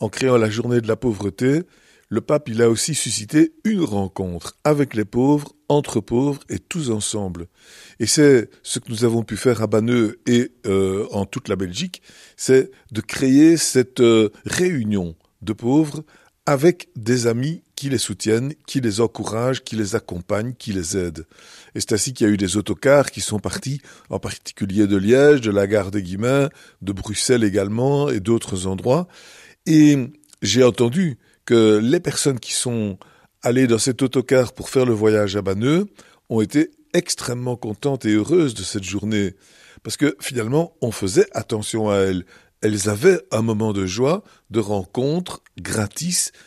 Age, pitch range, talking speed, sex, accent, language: 50-69, 105-140 Hz, 170 wpm, male, French, French